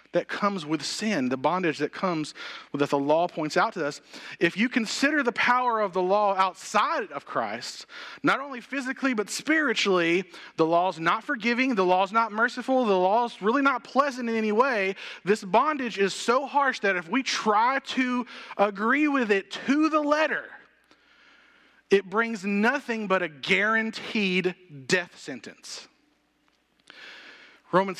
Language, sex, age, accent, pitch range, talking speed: English, male, 30-49, American, 165-235 Hz, 160 wpm